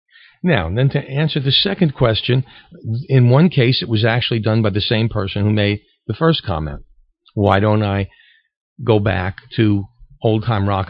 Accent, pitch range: American, 100-135 Hz